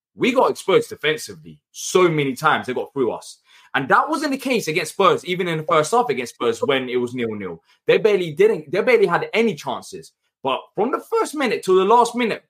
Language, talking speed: English, 220 wpm